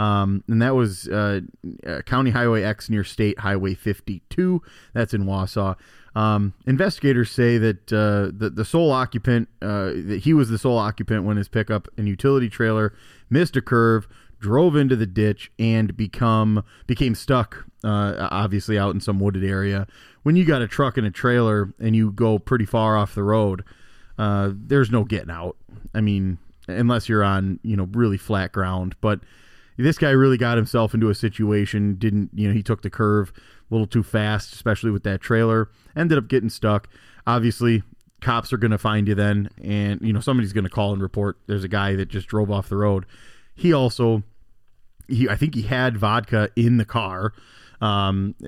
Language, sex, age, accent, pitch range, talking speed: English, male, 30-49, American, 100-115 Hz, 190 wpm